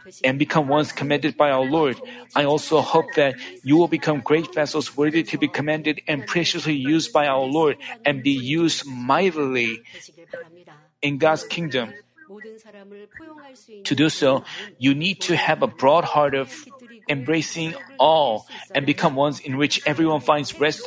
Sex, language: male, Korean